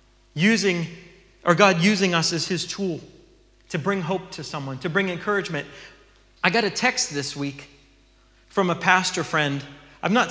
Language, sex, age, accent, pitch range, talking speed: English, male, 30-49, American, 150-205 Hz, 165 wpm